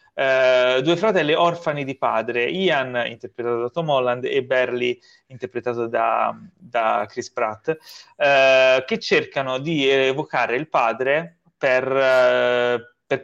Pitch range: 120-150 Hz